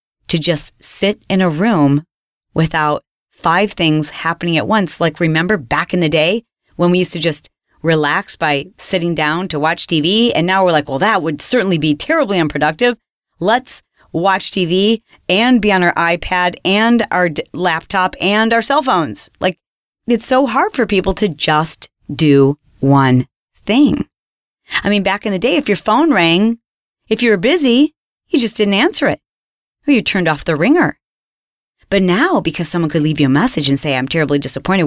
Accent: American